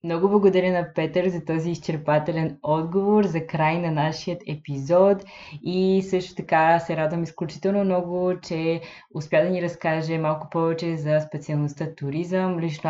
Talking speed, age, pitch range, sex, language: 145 wpm, 20-39, 155-185 Hz, female, Bulgarian